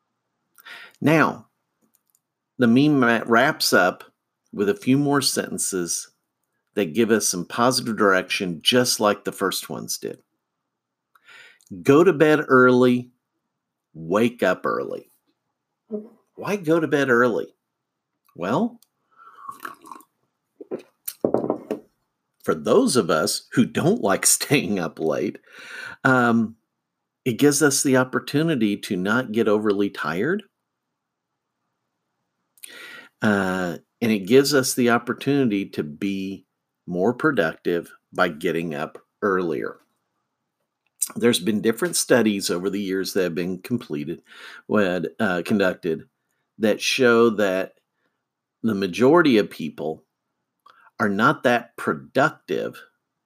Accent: American